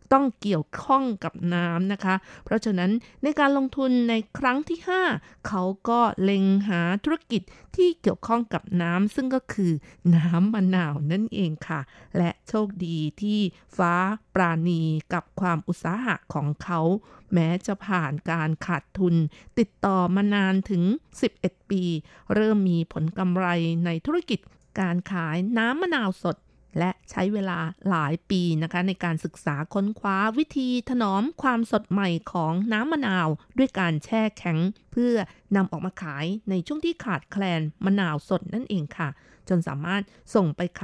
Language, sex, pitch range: Thai, female, 170-215 Hz